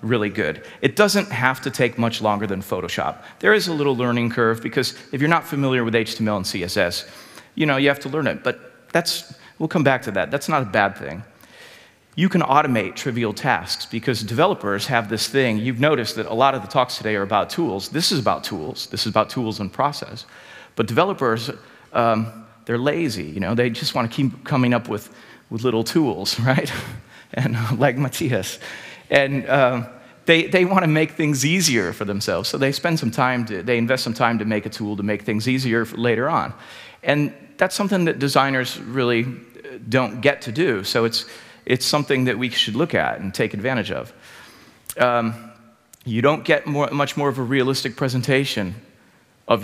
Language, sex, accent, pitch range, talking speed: English, male, American, 110-140 Hz, 195 wpm